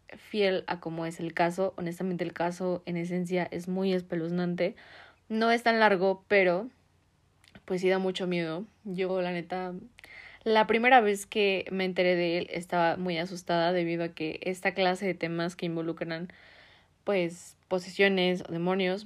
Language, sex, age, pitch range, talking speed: Spanish, female, 20-39, 170-190 Hz, 160 wpm